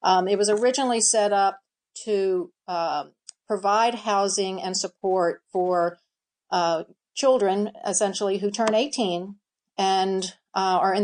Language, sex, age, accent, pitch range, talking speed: English, female, 50-69, American, 185-220 Hz, 125 wpm